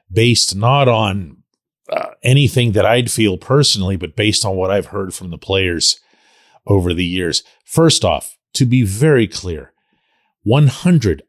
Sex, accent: male, American